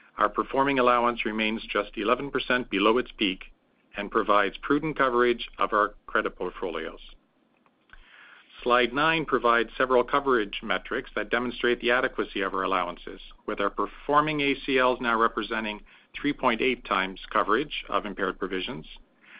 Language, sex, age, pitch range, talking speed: English, male, 50-69, 110-130 Hz, 130 wpm